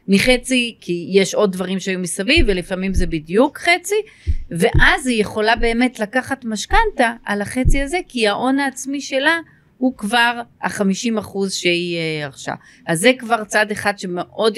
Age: 30-49